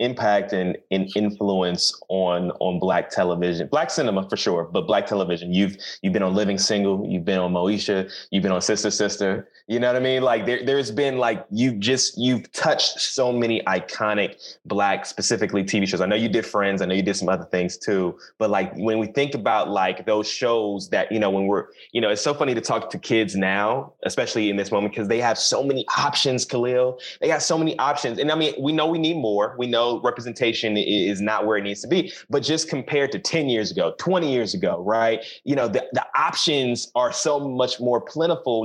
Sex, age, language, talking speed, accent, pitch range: male, 20-39, English, 225 wpm, American, 100-140 Hz